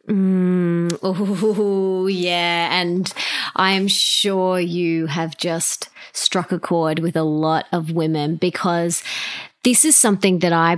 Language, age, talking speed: English, 20-39, 130 wpm